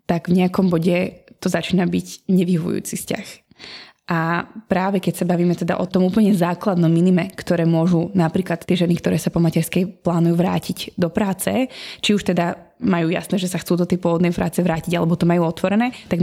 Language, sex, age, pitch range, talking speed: Slovak, female, 20-39, 175-190 Hz, 190 wpm